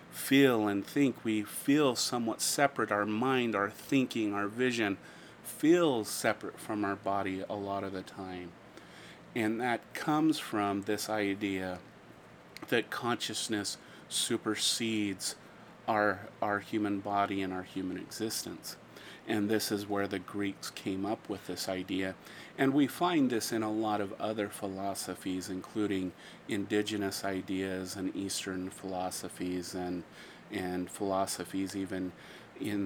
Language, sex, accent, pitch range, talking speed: English, male, American, 95-110 Hz, 130 wpm